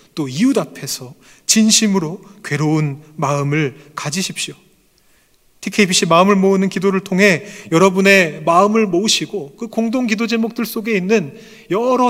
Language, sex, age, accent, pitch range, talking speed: English, male, 30-49, Korean, 135-215 Hz, 110 wpm